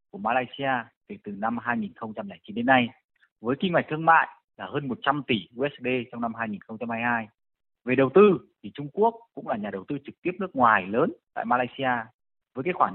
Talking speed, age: 195 wpm, 20-39